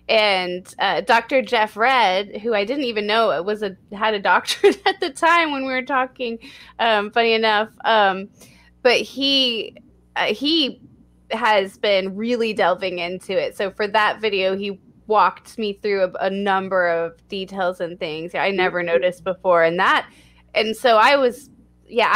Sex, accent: female, American